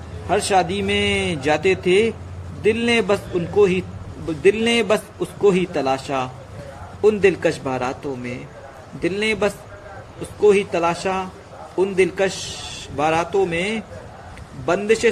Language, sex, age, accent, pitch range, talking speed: Hindi, male, 50-69, native, 145-195 Hz, 125 wpm